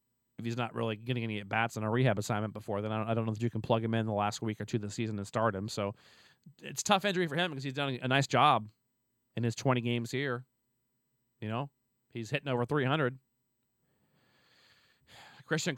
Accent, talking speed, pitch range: American, 230 wpm, 110-135 Hz